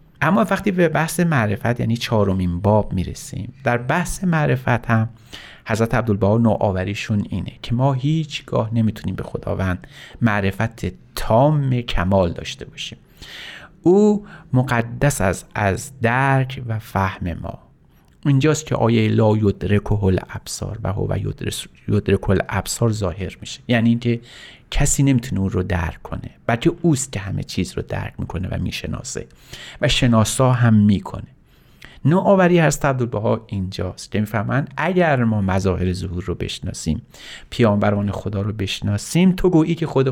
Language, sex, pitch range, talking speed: Persian, male, 100-135 Hz, 140 wpm